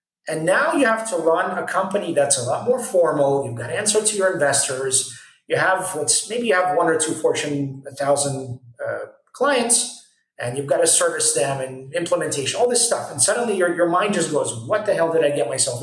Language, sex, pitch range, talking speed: English, male, 145-230 Hz, 225 wpm